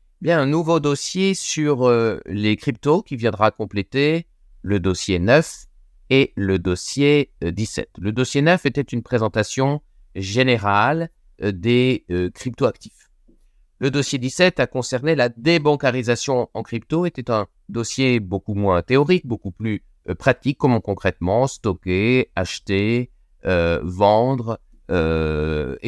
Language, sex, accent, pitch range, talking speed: French, male, French, 90-130 Hz, 120 wpm